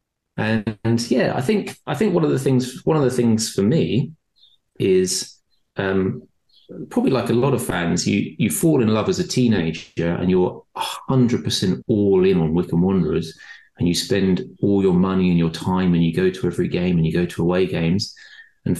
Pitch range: 90-130 Hz